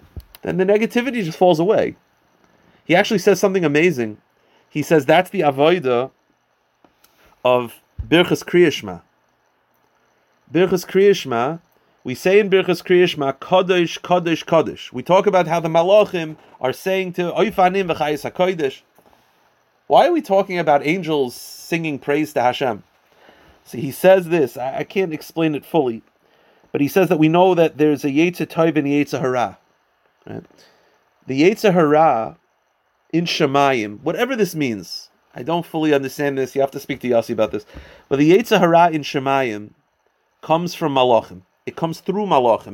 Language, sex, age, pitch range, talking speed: English, male, 30-49, 140-185 Hz, 150 wpm